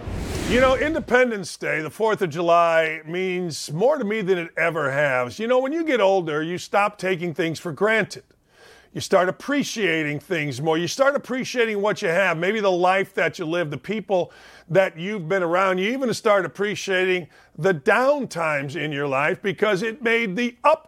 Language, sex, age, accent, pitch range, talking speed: English, male, 50-69, American, 170-215 Hz, 190 wpm